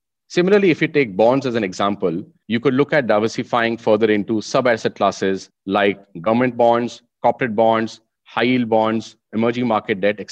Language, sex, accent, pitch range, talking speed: English, male, Indian, 105-125 Hz, 165 wpm